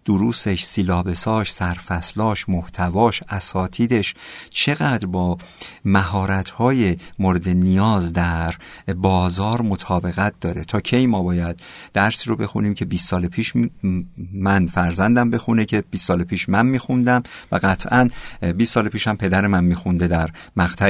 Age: 50-69